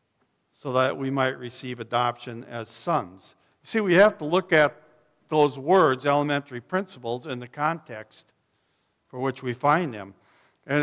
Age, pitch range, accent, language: 60-79, 125-155 Hz, American, English